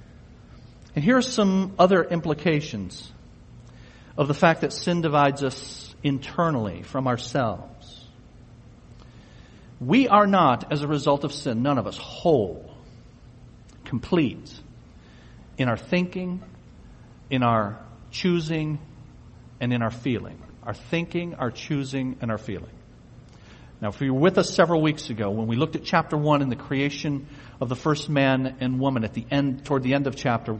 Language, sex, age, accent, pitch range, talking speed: English, male, 50-69, American, 120-170 Hz, 155 wpm